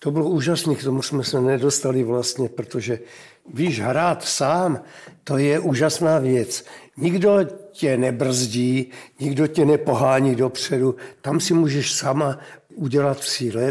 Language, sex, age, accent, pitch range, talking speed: Czech, male, 60-79, native, 130-155 Hz, 130 wpm